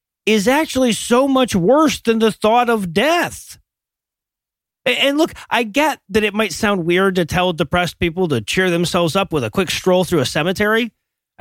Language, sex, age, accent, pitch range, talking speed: English, male, 40-59, American, 165-245 Hz, 185 wpm